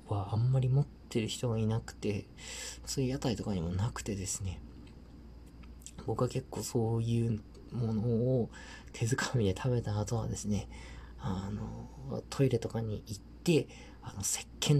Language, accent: Japanese, native